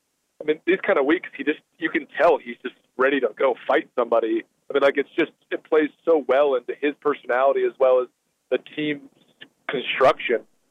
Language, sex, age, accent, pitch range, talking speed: English, male, 30-49, American, 135-185 Hz, 185 wpm